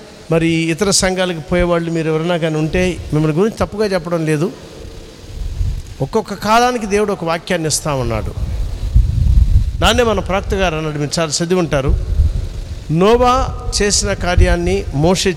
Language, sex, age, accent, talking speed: Telugu, male, 50-69, native, 130 wpm